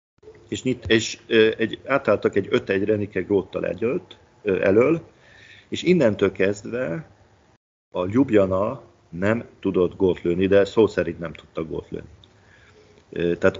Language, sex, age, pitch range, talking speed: Hungarian, male, 50-69, 95-110 Hz, 110 wpm